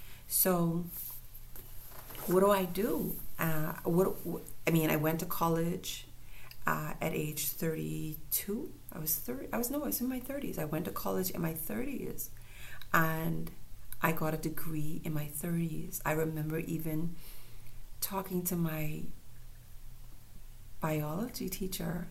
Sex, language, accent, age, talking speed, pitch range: female, English, American, 40-59, 140 wpm, 150-185 Hz